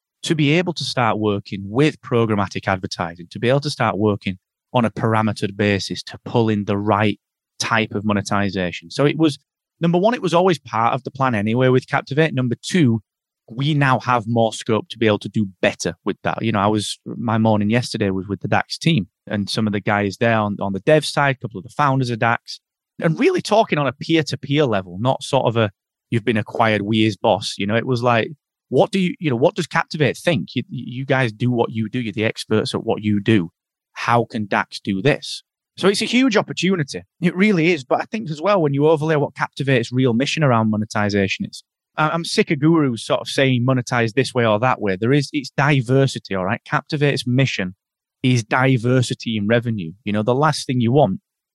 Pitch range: 105-145 Hz